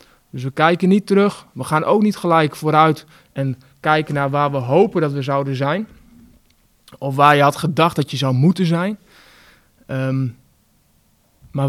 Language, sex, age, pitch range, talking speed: Dutch, male, 20-39, 135-170 Hz, 165 wpm